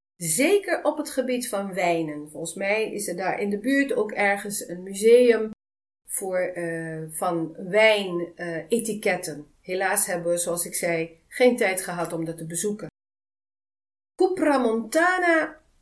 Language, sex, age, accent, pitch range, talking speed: Dutch, female, 40-59, Dutch, 170-260 Hz, 140 wpm